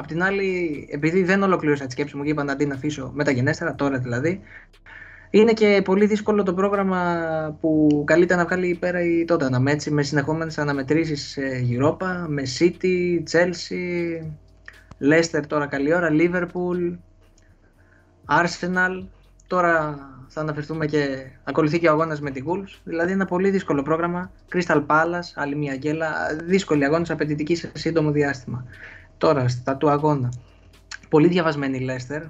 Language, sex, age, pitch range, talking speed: Greek, male, 20-39, 140-175 Hz, 150 wpm